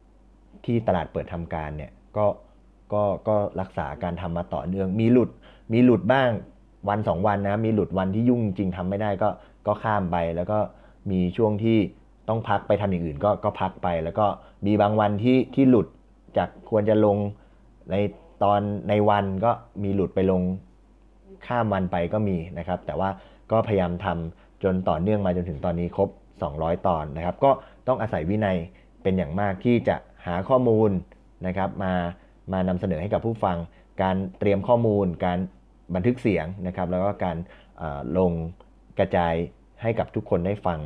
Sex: male